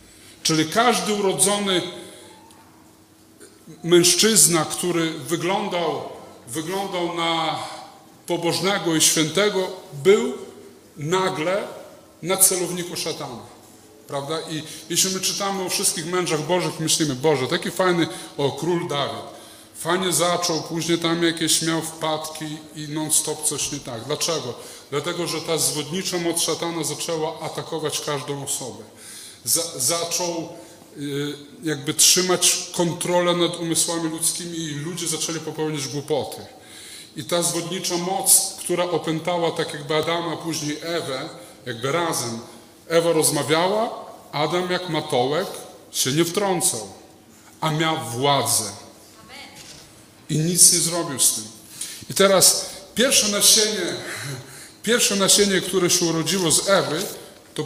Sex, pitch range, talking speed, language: male, 150-175 Hz, 115 wpm, Polish